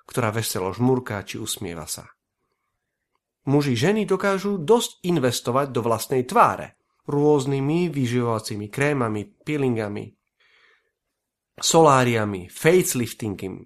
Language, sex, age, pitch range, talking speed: Slovak, male, 40-59, 115-165 Hz, 90 wpm